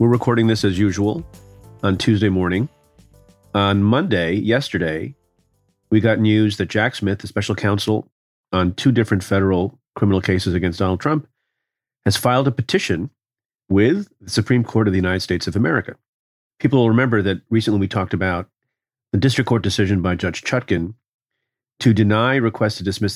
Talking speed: 165 wpm